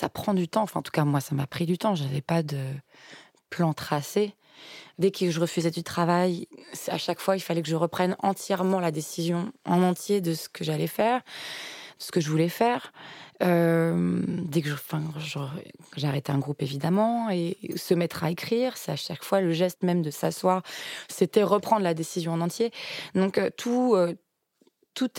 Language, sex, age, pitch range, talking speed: French, female, 20-39, 150-190 Hz, 200 wpm